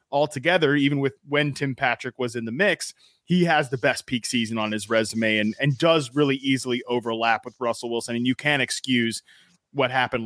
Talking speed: 200 wpm